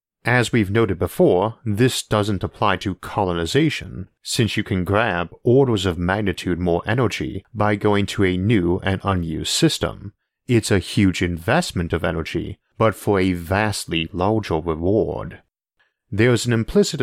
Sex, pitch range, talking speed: male, 90-110 Hz, 145 wpm